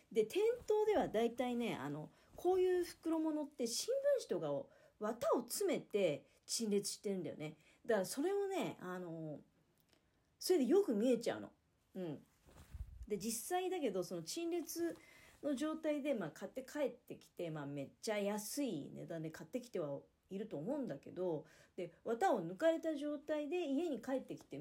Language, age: Japanese, 40-59